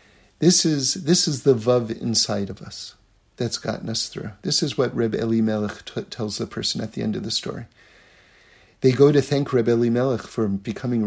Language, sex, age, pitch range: English, male, 50-69, 100-135 Hz